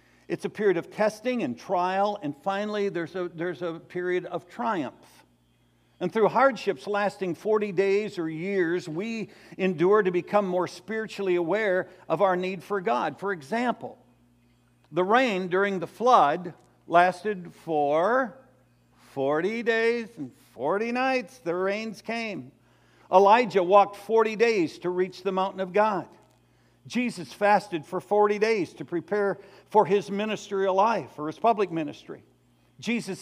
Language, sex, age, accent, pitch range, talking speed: English, male, 50-69, American, 170-215 Hz, 145 wpm